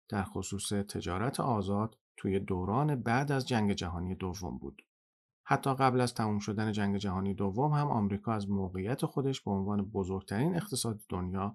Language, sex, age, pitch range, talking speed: Persian, male, 40-59, 95-125 Hz, 155 wpm